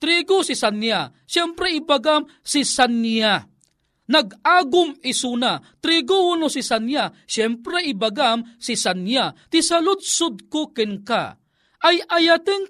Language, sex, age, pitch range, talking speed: Filipino, male, 40-59, 230-320 Hz, 105 wpm